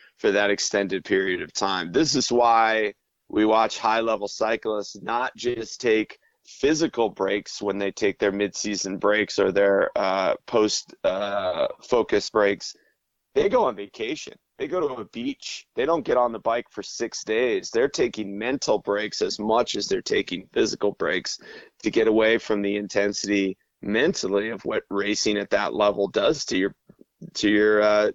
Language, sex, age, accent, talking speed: English, male, 30-49, American, 170 wpm